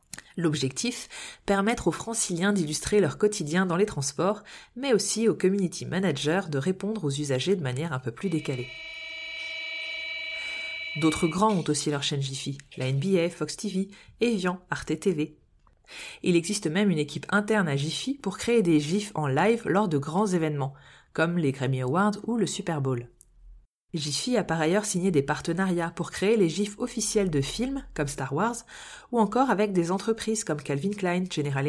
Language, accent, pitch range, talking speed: French, French, 150-215 Hz, 170 wpm